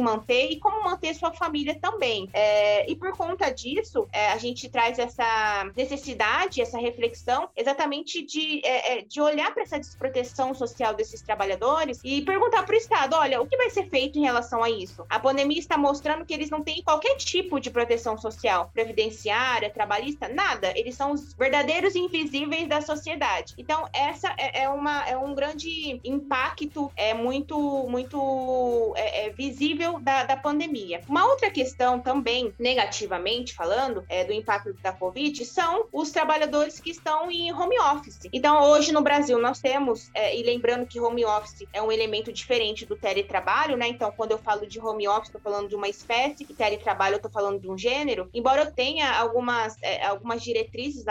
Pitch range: 225-315 Hz